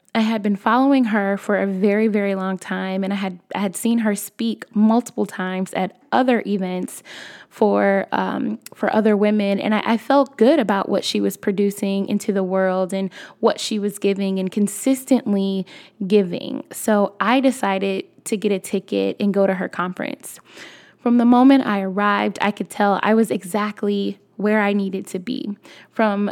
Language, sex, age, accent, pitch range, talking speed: English, female, 10-29, American, 195-220 Hz, 180 wpm